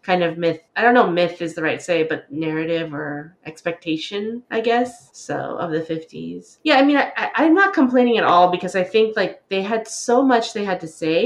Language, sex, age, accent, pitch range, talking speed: English, female, 20-39, American, 160-215 Hz, 230 wpm